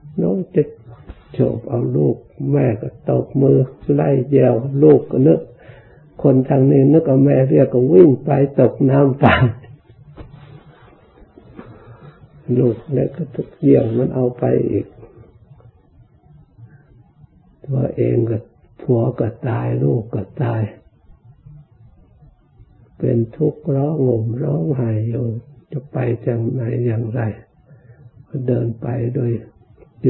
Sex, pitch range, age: male, 115-140 Hz, 60-79